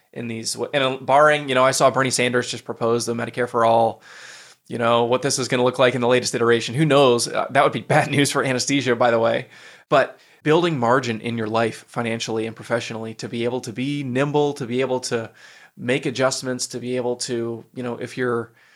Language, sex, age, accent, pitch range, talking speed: English, male, 20-39, American, 115-135 Hz, 225 wpm